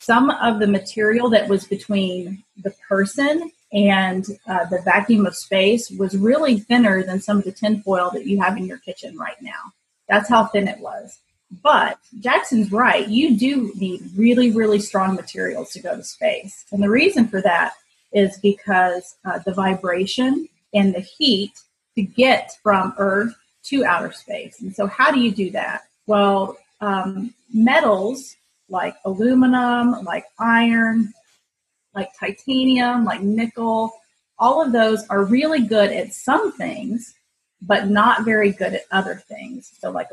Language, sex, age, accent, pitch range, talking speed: English, female, 30-49, American, 195-245 Hz, 160 wpm